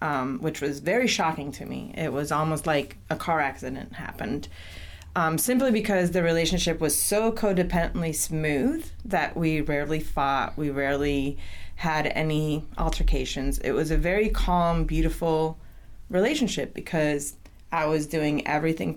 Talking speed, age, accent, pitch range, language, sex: 140 wpm, 30-49, American, 145-170 Hz, English, female